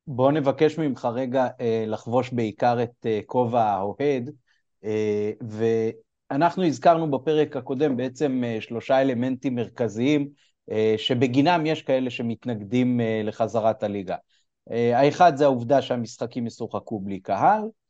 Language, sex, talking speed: Hebrew, male, 125 wpm